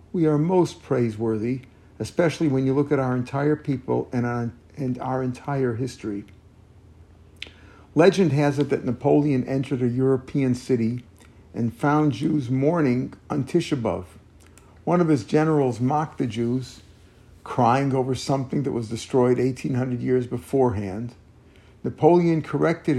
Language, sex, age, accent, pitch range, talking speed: English, male, 50-69, American, 115-145 Hz, 135 wpm